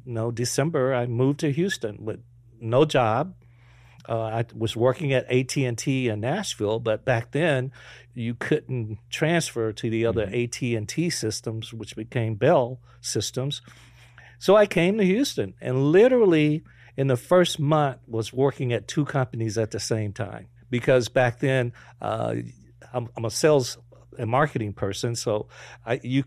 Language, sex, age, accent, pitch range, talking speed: English, male, 50-69, American, 115-135 Hz, 150 wpm